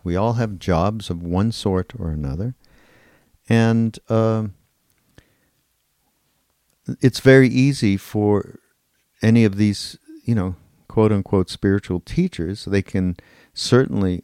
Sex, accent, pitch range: male, American, 90-115 Hz